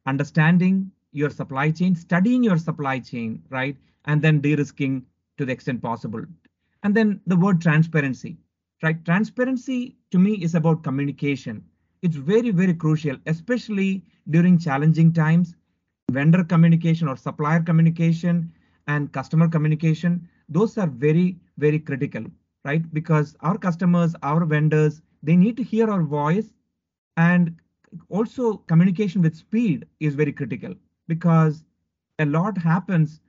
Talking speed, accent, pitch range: 130 wpm, Indian, 150-180 Hz